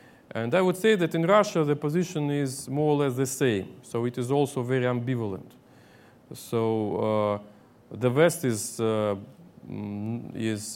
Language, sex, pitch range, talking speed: Slovak, male, 105-135 Hz, 155 wpm